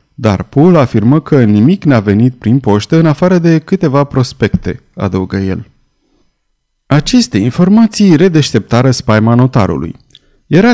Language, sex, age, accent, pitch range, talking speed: Romanian, male, 30-49, native, 115-165 Hz, 125 wpm